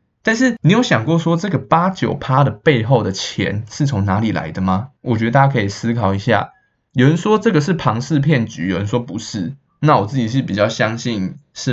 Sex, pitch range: male, 105-140 Hz